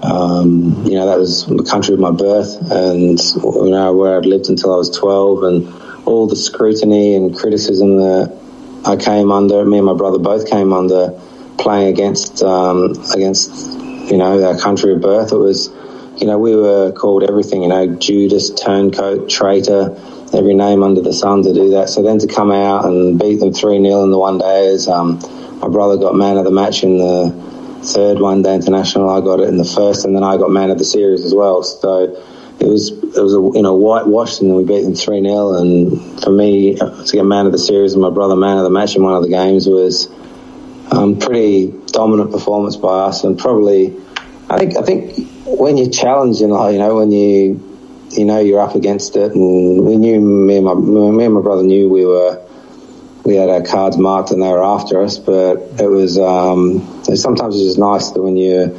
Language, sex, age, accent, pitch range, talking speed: English, male, 20-39, Australian, 95-100 Hz, 215 wpm